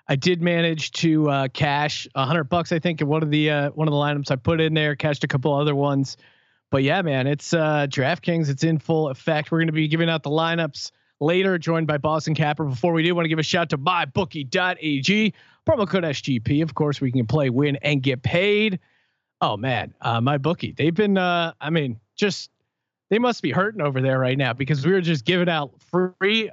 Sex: male